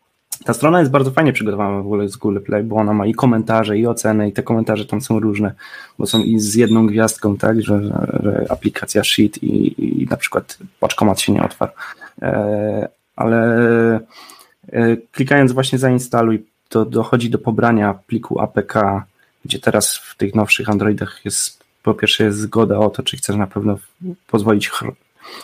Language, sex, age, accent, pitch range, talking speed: Polish, male, 20-39, native, 105-115 Hz, 170 wpm